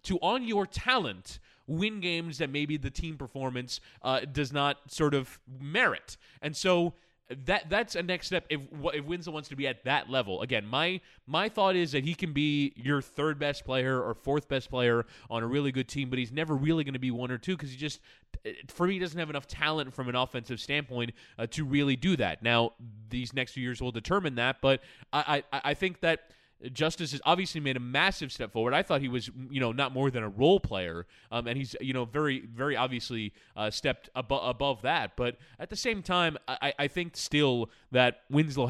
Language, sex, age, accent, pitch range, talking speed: English, male, 20-39, American, 125-155 Hz, 215 wpm